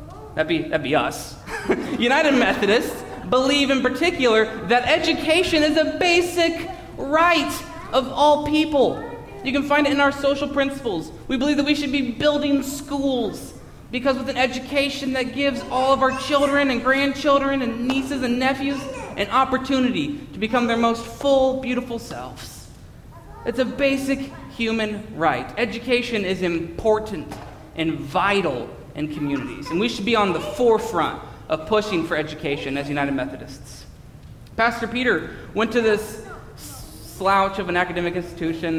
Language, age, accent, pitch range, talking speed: English, 30-49, American, 205-280 Hz, 145 wpm